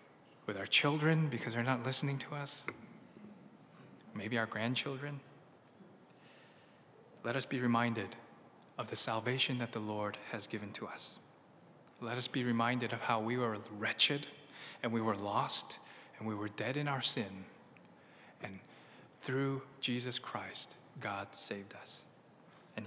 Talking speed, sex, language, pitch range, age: 140 wpm, male, English, 115-150 Hz, 20-39